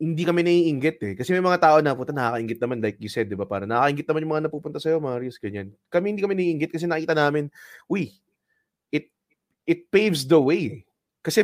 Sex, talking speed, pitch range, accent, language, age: male, 220 wpm, 120-175 Hz, Filipino, English, 20-39